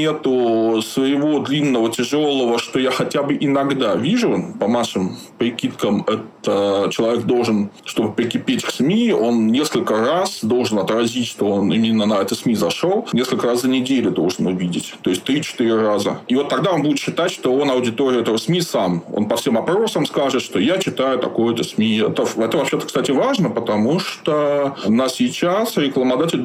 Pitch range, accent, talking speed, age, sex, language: 115-165 Hz, native, 170 wpm, 20-39, male, Russian